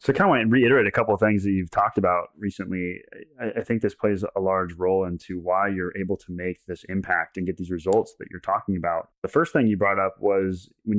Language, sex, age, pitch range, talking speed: English, male, 20-39, 95-110 Hz, 250 wpm